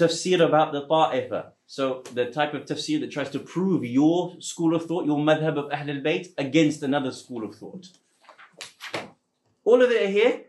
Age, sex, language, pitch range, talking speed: 30-49, male, English, 135-165 Hz, 175 wpm